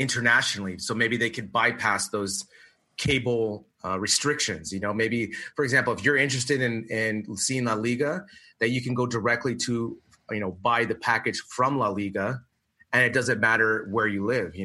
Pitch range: 95-115 Hz